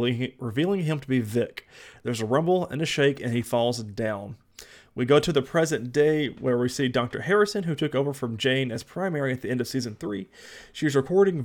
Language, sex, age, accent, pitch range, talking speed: English, male, 30-49, American, 120-150 Hz, 215 wpm